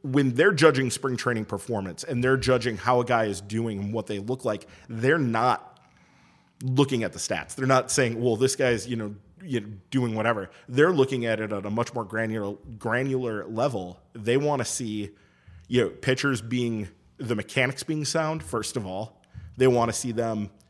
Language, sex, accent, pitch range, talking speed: English, male, American, 110-130 Hz, 195 wpm